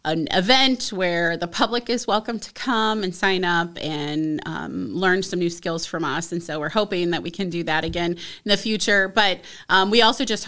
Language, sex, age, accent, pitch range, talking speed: English, female, 30-49, American, 175-220 Hz, 220 wpm